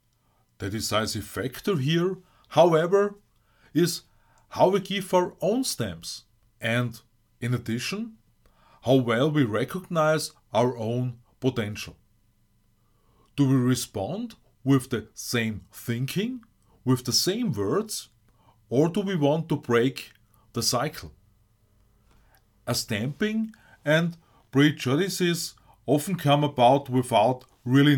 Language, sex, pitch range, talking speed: English, male, 110-150 Hz, 105 wpm